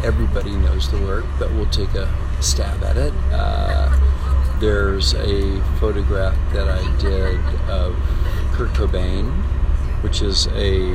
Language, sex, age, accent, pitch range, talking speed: French, male, 40-59, American, 75-100 Hz, 130 wpm